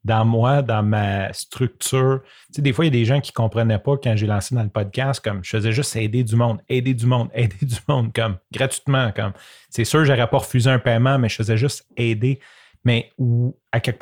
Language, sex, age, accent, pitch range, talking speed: French, male, 30-49, Canadian, 110-135 Hz, 245 wpm